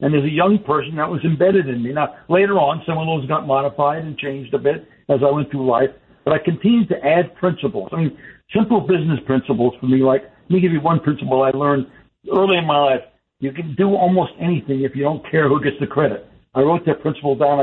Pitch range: 140-175 Hz